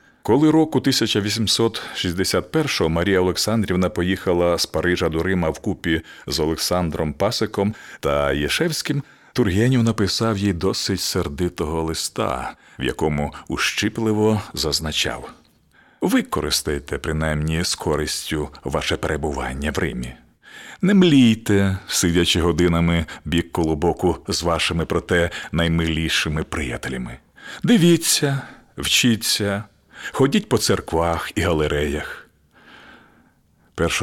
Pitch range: 80-110 Hz